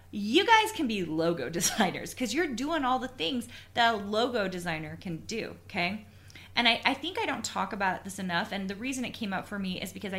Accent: American